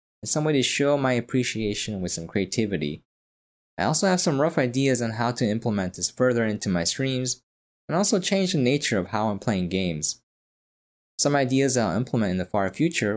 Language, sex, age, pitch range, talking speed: English, male, 20-39, 95-130 Hz, 195 wpm